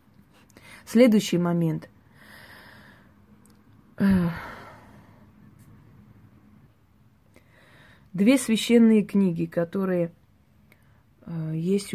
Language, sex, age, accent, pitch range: Russian, female, 30-49, native, 165-200 Hz